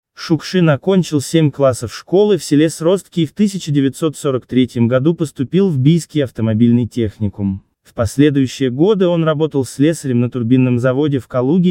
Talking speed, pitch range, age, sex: 150 wpm, 120-165 Hz, 20-39, male